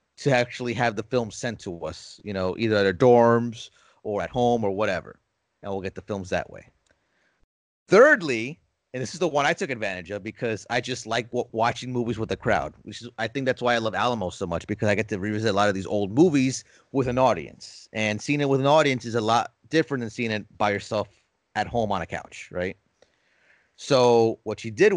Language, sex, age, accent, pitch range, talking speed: English, male, 30-49, American, 105-135 Hz, 230 wpm